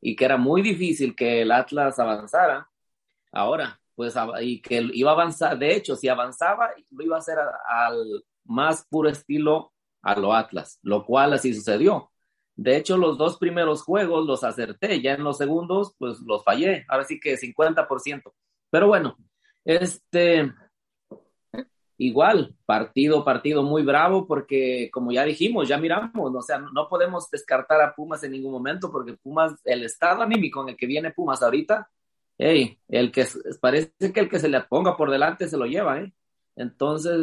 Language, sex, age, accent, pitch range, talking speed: Spanish, male, 30-49, Mexican, 135-175 Hz, 175 wpm